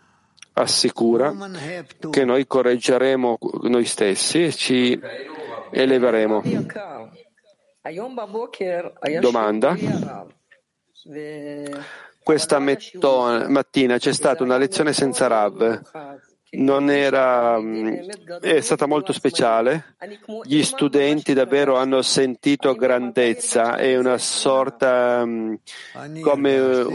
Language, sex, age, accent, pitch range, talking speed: Italian, male, 40-59, native, 125-155 Hz, 80 wpm